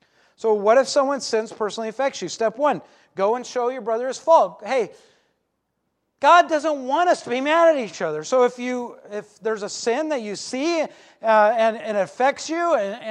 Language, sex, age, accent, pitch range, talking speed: English, male, 40-59, American, 205-285 Hz, 205 wpm